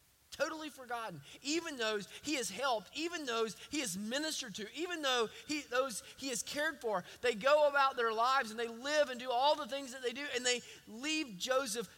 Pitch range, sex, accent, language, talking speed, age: 155-250 Hz, male, American, English, 205 wpm, 20-39